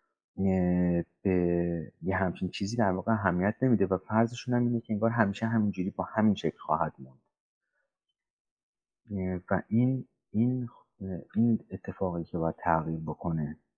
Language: Persian